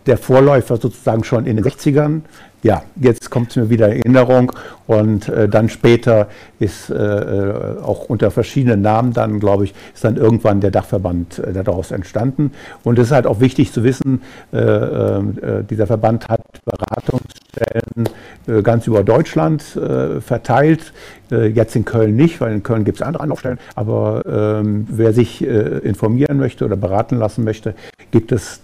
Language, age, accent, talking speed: German, 50-69, German, 160 wpm